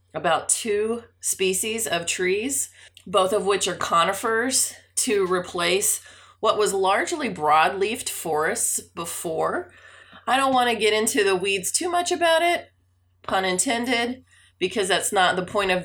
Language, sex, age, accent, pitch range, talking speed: English, female, 30-49, American, 145-185 Hz, 145 wpm